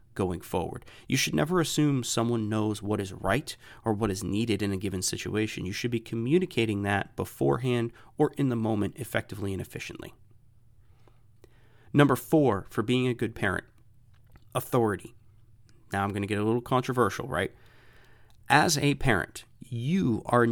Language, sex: English, male